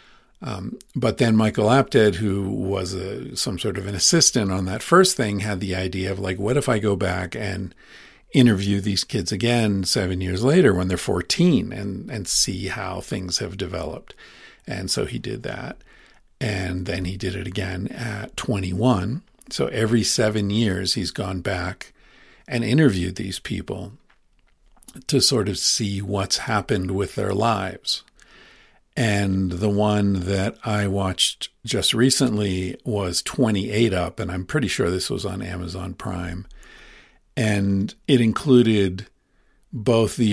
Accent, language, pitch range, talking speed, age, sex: American, English, 95-115 Hz, 155 wpm, 50-69, male